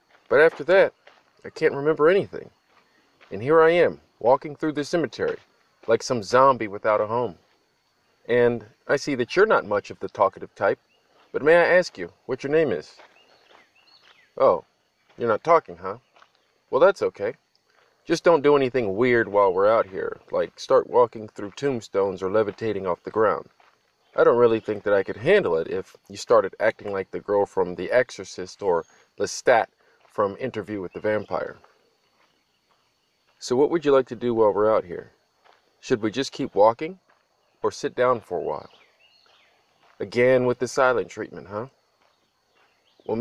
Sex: male